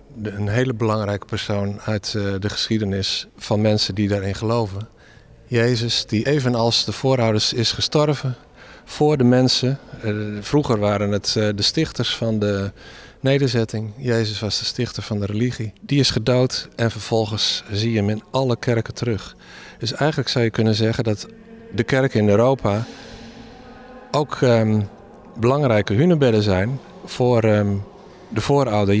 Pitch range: 110-150 Hz